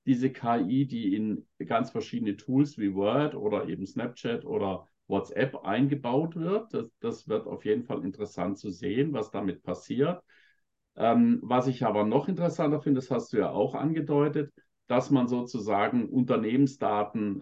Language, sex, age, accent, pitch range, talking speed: English, male, 50-69, German, 105-150 Hz, 155 wpm